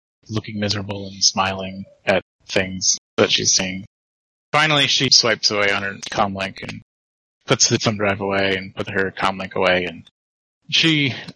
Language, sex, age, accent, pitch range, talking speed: English, male, 20-39, American, 100-125 Hz, 155 wpm